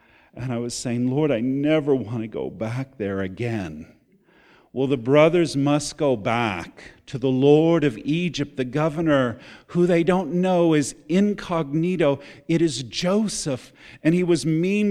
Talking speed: 155 wpm